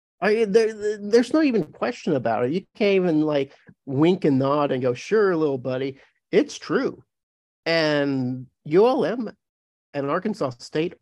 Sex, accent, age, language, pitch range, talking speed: male, American, 50-69, English, 140-235 Hz, 140 wpm